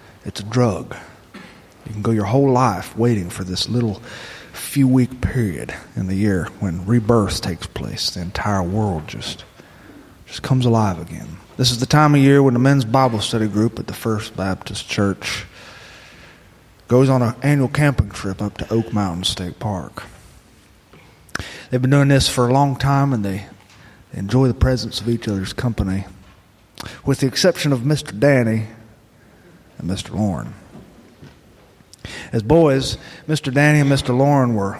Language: English